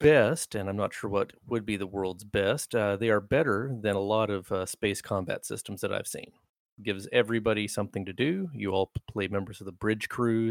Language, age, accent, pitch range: English, 30-49, American, 95-115 Hz